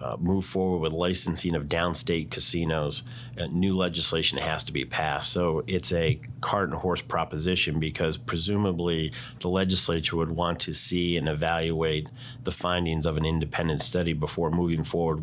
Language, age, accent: English, 40-59, American